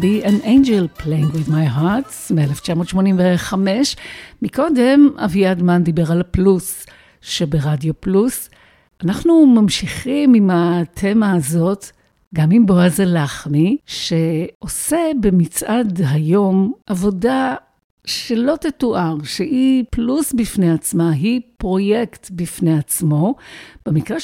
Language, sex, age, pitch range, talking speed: Hebrew, female, 50-69, 170-230 Hz, 100 wpm